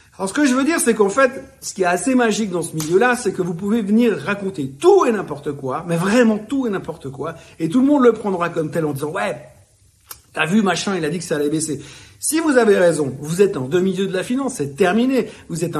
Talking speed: 270 wpm